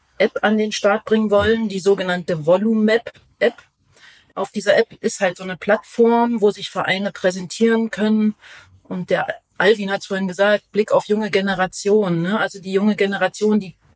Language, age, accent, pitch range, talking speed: German, 40-59, German, 180-210 Hz, 165 wpm